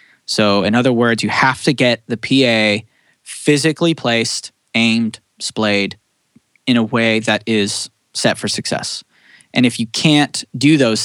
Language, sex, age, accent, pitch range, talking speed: English, male, 20-39, American, 105-125 Hz, 150 wpm